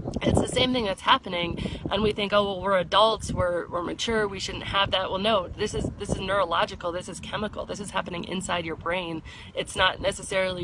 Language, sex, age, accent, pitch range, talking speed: English, female, 30-49, American, 170-205 Hz, 220 wpm